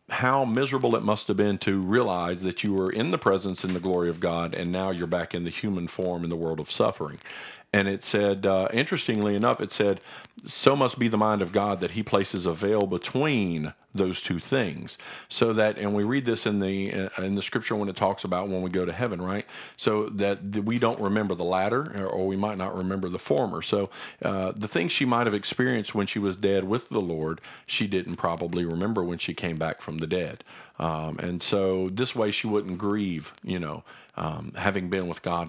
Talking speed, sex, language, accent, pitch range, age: 220 wpm, male, English, American, 90-105 Hz, 50-69